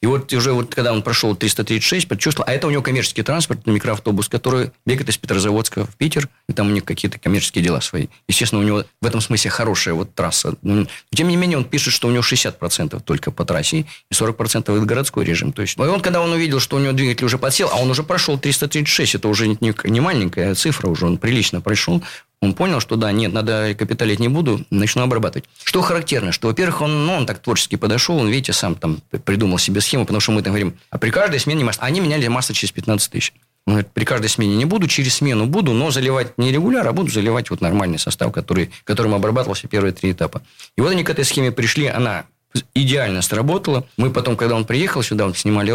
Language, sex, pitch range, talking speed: Russian, male, 105-135 Hz, 230 wpm